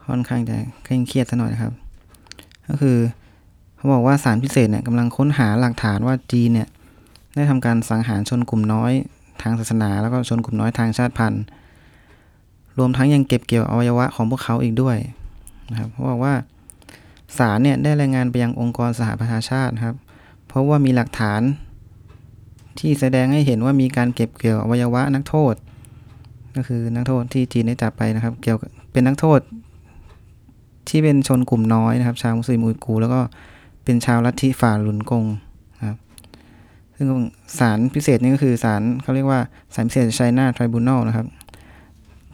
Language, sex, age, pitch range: Thai, male, 20-39, 110-125 Hz